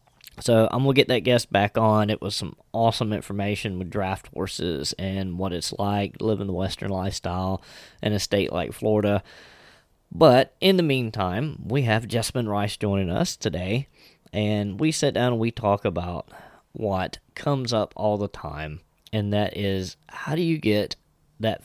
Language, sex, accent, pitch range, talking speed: English, male, American, 95-120 Hz, 175 wpm